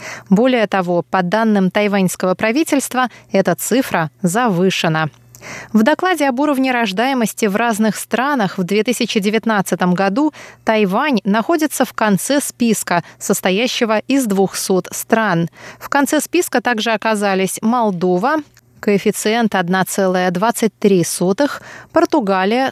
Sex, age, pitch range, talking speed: female, 20-39, 185-245 Hz, 100 wpm